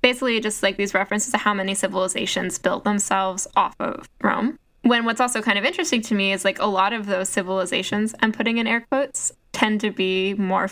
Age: 10-29